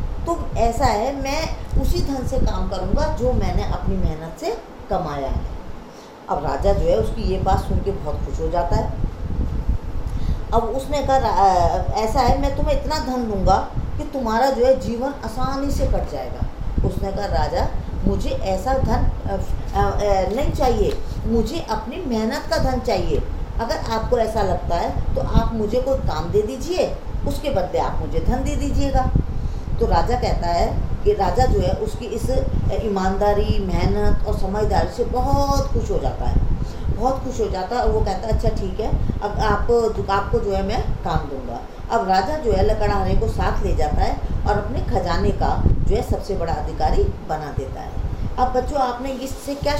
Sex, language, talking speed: female, Hindi, 185 wpm